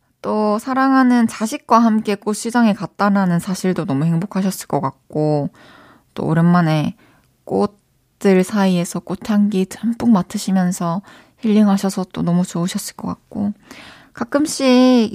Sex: female